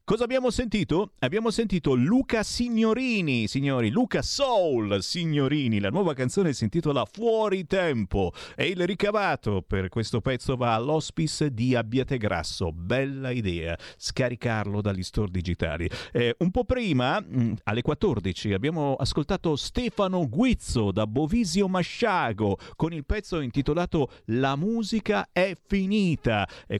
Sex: male